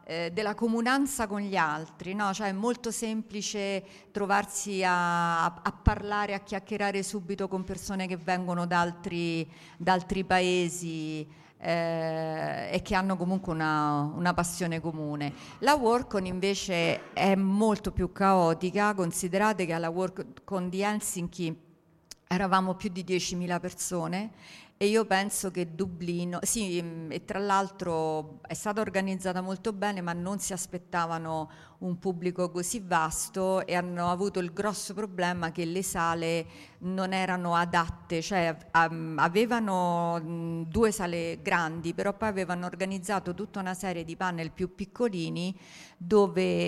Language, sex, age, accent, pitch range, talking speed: Italian, female, 50-69, native, 165-195 Hz, 130 wpm